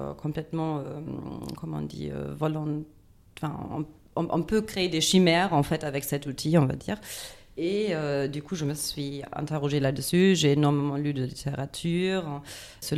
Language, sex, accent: French, female, French